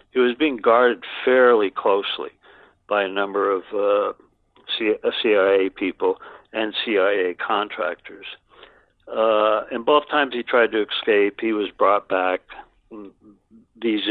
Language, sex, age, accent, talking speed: English, male, 60-79, American, 125 wpm